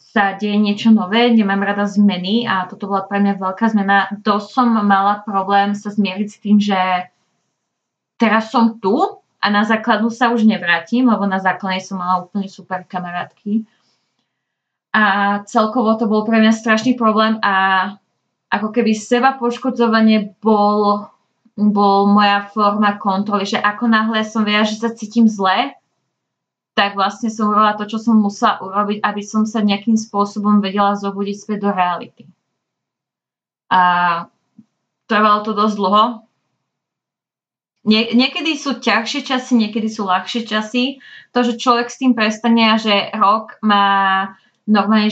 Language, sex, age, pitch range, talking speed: Slovak, female, 20-39, 200-225 Hz, 145 wpm